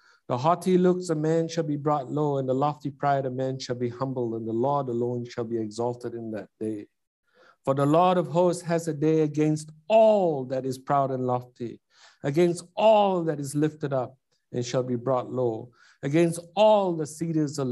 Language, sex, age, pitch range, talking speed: English, male, 60-79, 130-170 Hz, 200 wpm